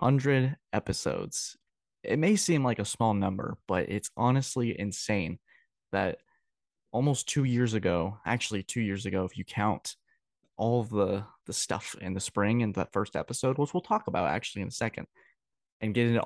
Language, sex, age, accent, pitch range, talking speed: English, male, 20-39, American, 100-125 Hz, 175 wpm